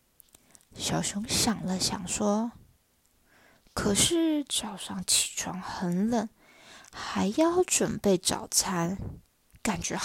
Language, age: Chinese, 20-39